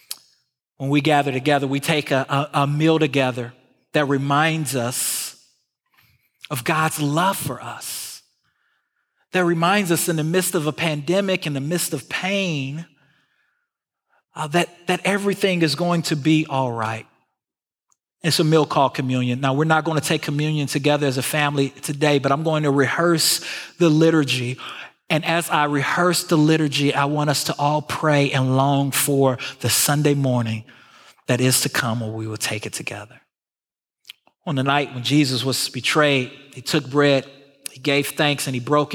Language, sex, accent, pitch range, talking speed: English, male, American, 130-160 Hz, 170 wpm